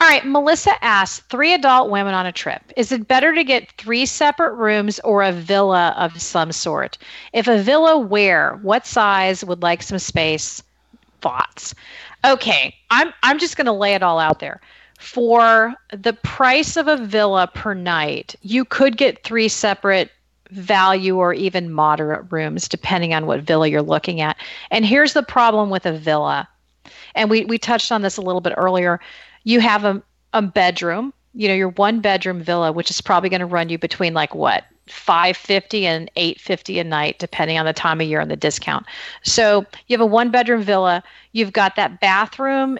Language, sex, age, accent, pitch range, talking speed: English, female, 40-59, American, 180-235 Hz, 190 wpm